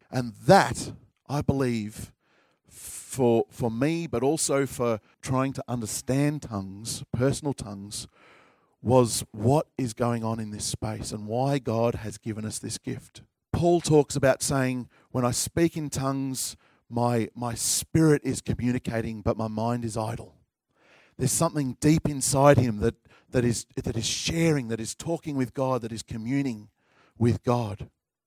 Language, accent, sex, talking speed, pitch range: English, Australian, male, 155 wpm, 115-140 Hz